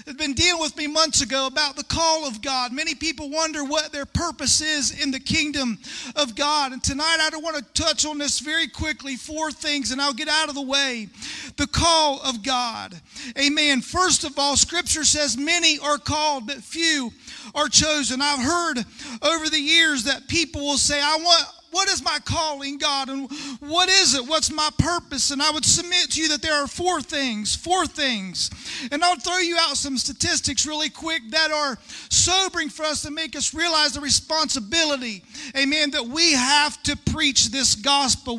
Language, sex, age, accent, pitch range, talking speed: English, male, 40-59, American, 265-310 Hz, 195 wpm